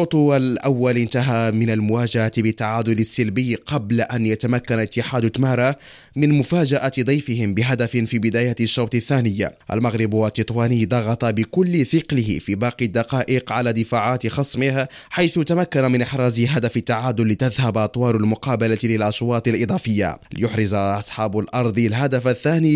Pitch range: 115-135 Hz